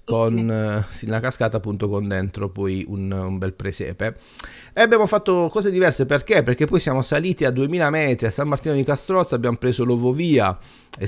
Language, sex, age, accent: Italian, male, 30-49, native